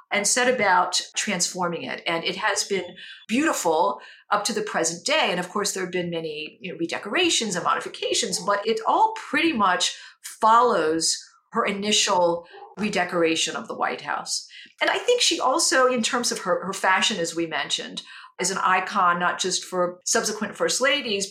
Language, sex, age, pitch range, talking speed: English, female, 50-69, 180-245 Hz, 170 wpm